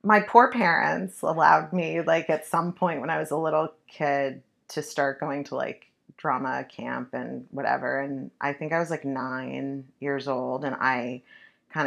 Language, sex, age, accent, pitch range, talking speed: English, female, 30-49, American, 135-165 Hz, 180 wpm